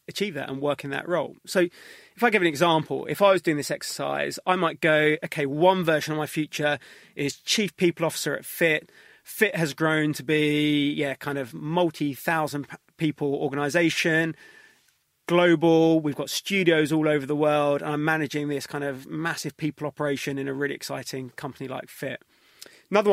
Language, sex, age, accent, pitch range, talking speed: English, male, 30-49, British, 145-165 Hz, 180 wpm